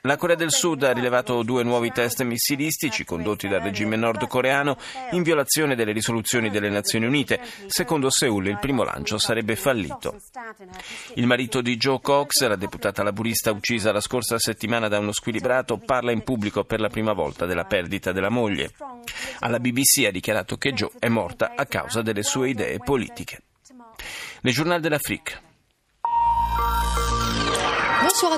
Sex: male